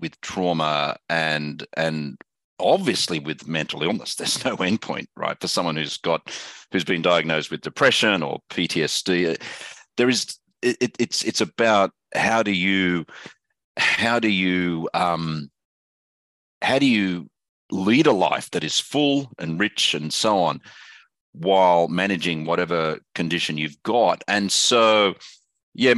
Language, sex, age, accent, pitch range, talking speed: English, male, 40-59, Australian, 85-115 Hz, 135 wpm